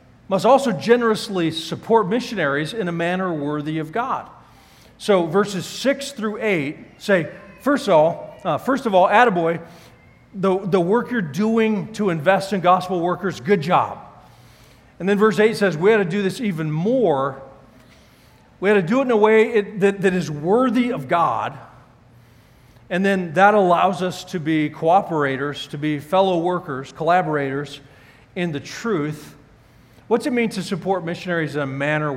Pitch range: 150-200 Hz